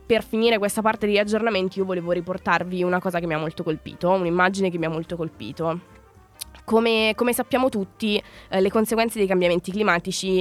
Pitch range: 170-205 Hz